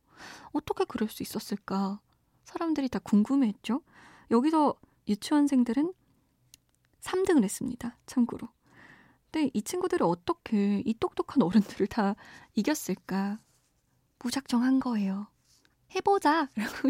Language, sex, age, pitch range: Korean, female, 20-39, 205-295 Hz